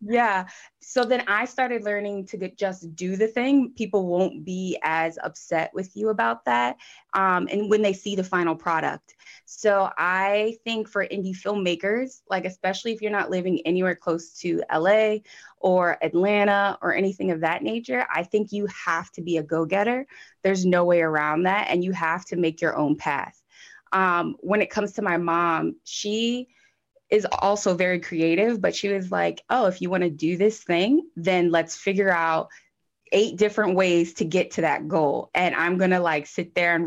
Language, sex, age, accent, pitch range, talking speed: English, female, 20-39, American, 170-210 Hz, 185 wpm